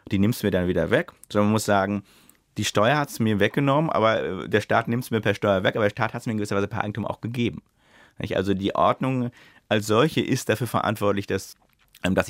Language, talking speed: German, 240 wpm